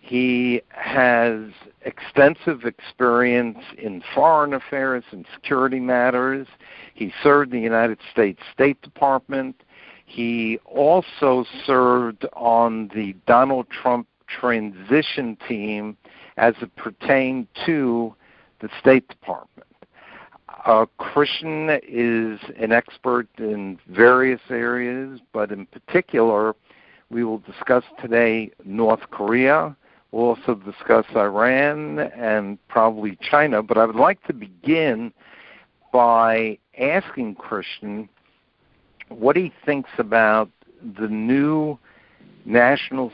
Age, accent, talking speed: 60-79, American, 105 wpm